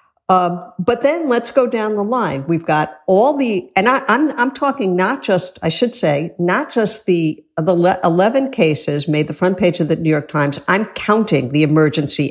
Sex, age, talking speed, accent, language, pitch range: female, 50-69, 200 wpm, American, English, 155-230 Hz